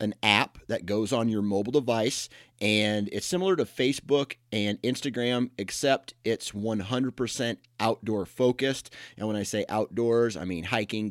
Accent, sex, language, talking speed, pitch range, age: American, male, English, 150 wpm, 100-115 Hz, 30-49